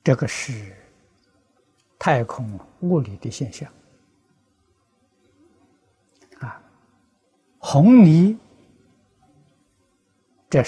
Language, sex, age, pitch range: Chinese, male, 60-79, 120-165 Hz